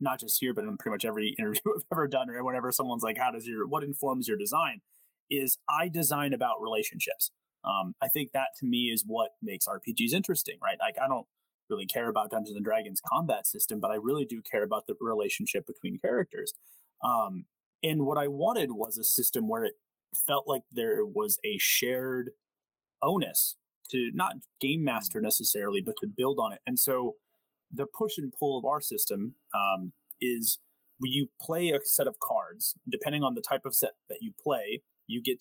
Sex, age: male, 30-49